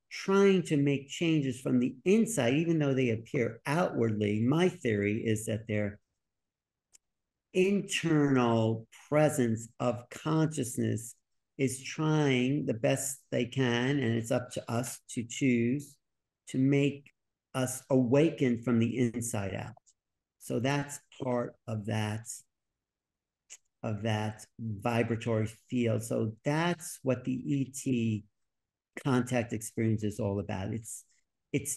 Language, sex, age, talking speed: English, male, 50-69, 120 wpm